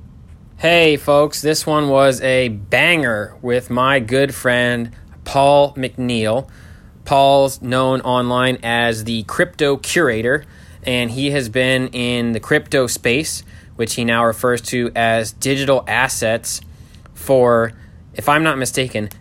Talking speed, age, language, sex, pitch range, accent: 130 wpm, 20-39, English, male, 110-135 Hz, American